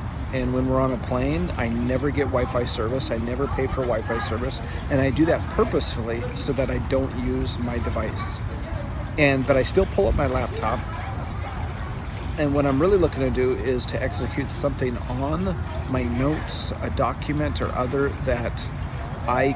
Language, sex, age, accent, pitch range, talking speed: English, male, 40-59, American, 105-135 Hz, 175 wpm